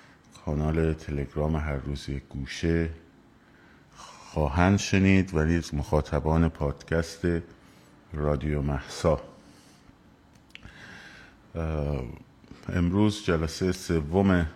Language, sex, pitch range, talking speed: Persian, male, 75-95 Hz, 65 wpm